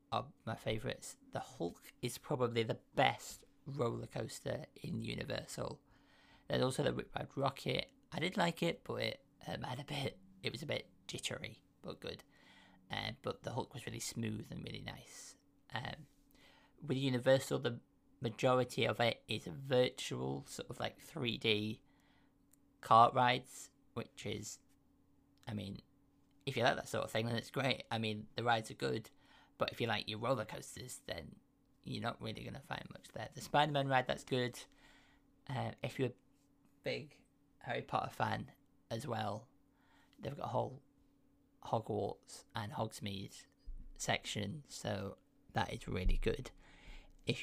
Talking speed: 160 wpm